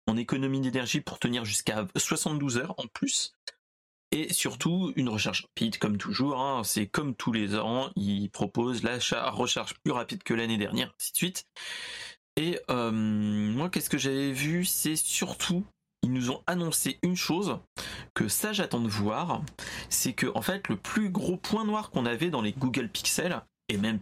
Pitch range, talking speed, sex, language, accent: 110-165 Hz, 180 wpm, male, French, French